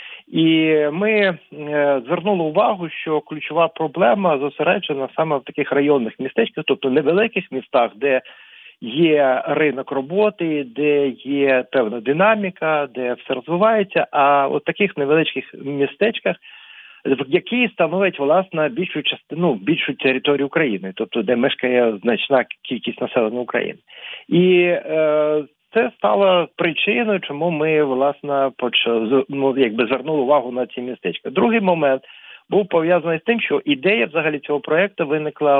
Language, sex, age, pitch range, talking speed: English, male, 40-59, 135-170 Hz, 130 wpm